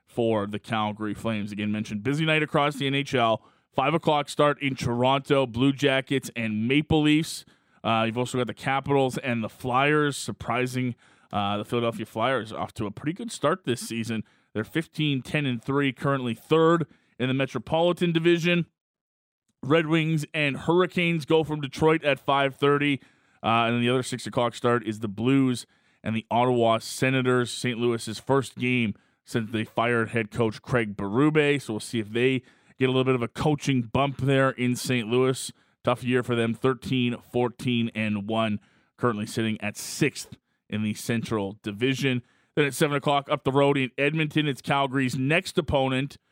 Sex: male